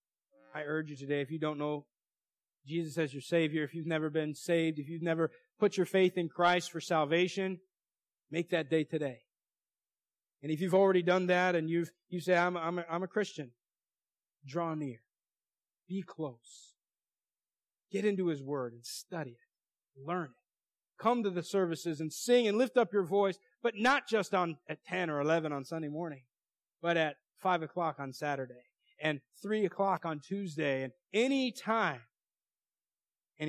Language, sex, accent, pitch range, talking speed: English, male, American, 140-175 Hz, 175 wpm